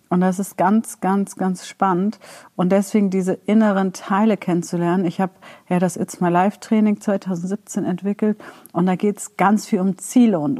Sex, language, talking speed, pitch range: female, German, 180 wpm, 170-205 Hz